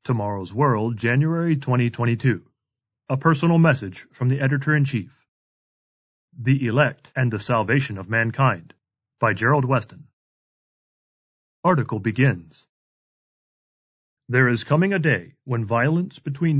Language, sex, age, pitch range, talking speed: English, male, 40-59, 120-150 Hz, 110 wpm